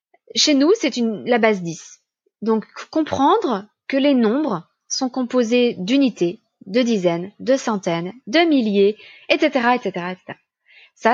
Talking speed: 130 wpm